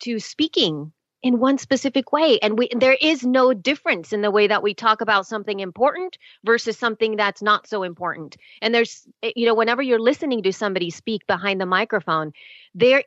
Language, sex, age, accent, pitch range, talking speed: English, female, 30-49, American, 190-250 Hz, 190 wpm